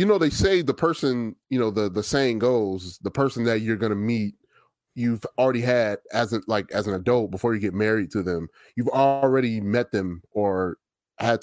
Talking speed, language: 200 wpm, English